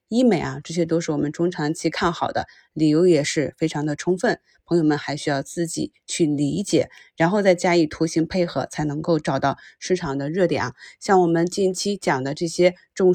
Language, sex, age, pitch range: Chinese, female, 20-39, 155-190 Hz